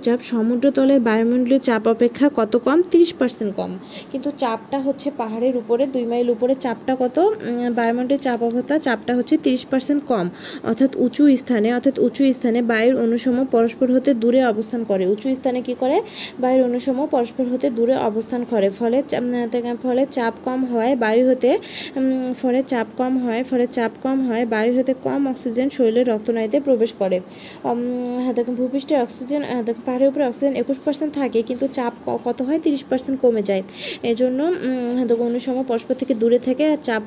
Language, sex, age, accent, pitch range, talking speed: Bengali, female, 20-39, native, 235-265 Hz, 145 wpm